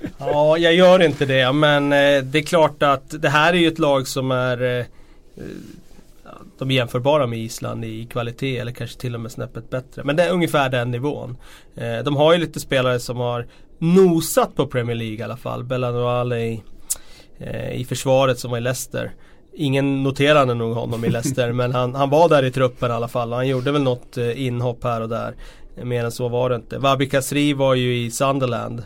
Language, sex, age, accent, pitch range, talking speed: Swedish, male, 30-49, native, 120-140 Hz, 205 wpm